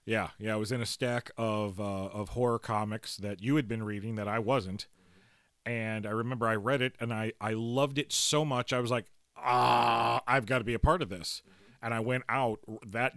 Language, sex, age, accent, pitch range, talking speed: English, male, 40-59, American, 105-140 Hz, 230 wpm